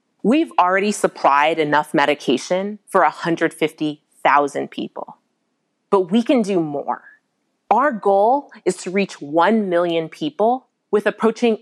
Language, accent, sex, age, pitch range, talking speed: English, American, female, 30-49, 175-240 Hz, 120 wpm